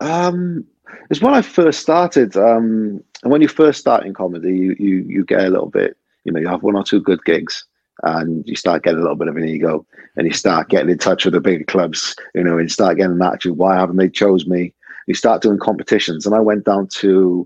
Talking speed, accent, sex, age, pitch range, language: 245 wpm, British, male, 40-59, 90-120 Hz, English